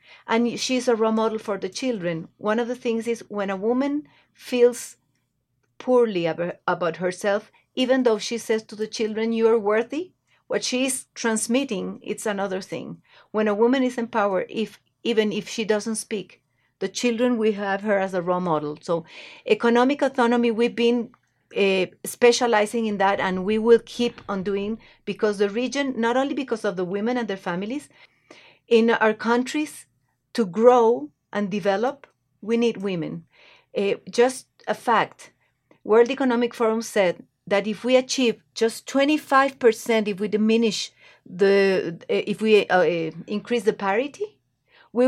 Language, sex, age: English, female, 40-59